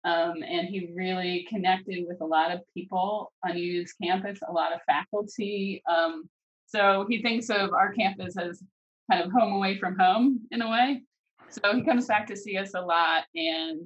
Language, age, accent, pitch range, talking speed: English, 30-49, American, 165-200 Hz, 190 wpm